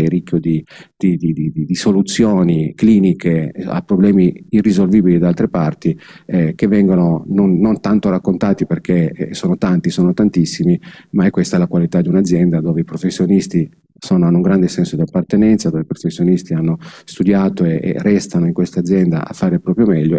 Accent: native